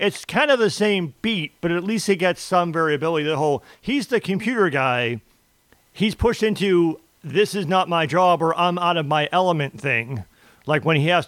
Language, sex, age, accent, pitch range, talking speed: English, male, 40-59, American, 150-185 Hz, 200 wpm